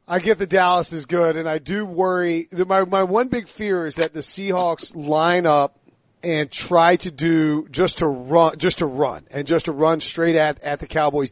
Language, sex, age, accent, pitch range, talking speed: English, male, 40-59, American, 145-165 Hz, 215 wpm